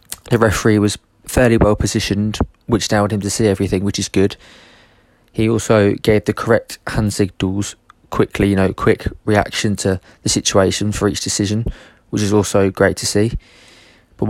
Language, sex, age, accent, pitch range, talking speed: English, male, 20-39, British, 95-105 Hz, 165 wpm